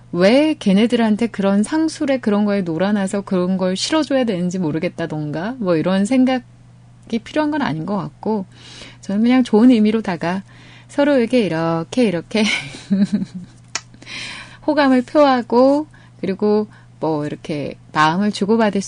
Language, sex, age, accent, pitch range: Korean, female, 20-39, native, 170-245 Hz